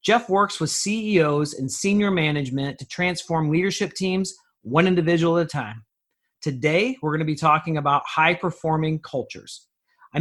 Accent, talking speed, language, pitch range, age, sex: American, 155 wpm, English, 145-180 Hz, 40-59, male